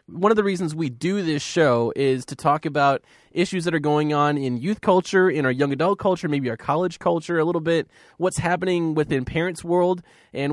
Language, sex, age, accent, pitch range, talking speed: English, male, 20-39, American, 135-180 Hz, 215 wpm